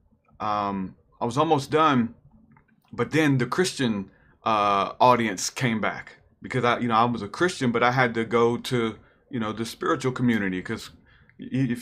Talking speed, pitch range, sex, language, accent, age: 175 wpm, 100-120 Hz, male, English, American, 30-49